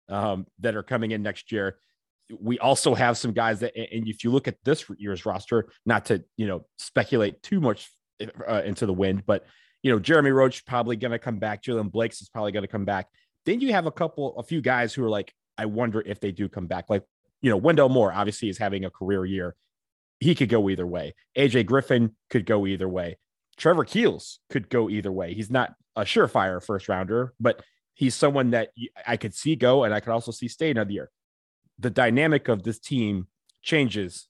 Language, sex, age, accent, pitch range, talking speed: English, male, 30-49, American, 100-120 Hz, 215 wpm